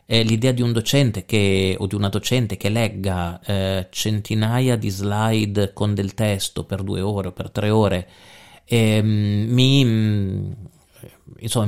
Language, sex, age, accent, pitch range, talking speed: Italian, male, 40-59, native, 95-130 Hz, 145 wpm